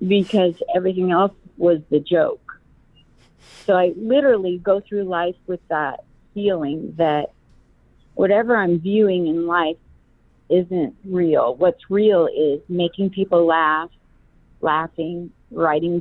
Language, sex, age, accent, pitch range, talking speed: English, female, 40-59, American, 175-215 Hz, 115 wpm